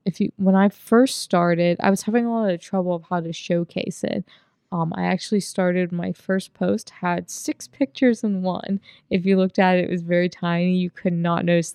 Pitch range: 175-200 Hz